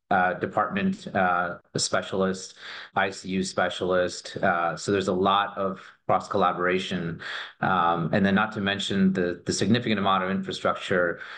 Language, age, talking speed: English, 30-49, 135 wpm